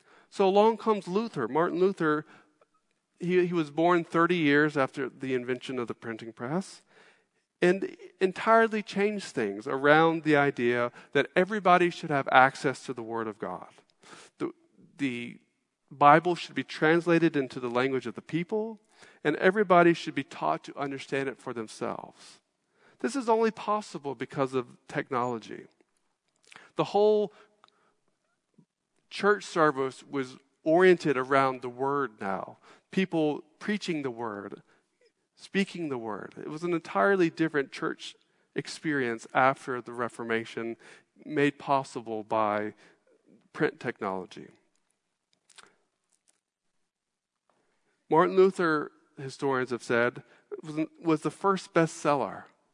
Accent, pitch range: American, 130-180 Hz